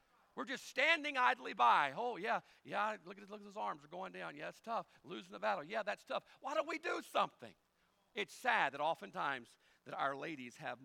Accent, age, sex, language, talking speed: American, 50-69, male, English, 215 wpm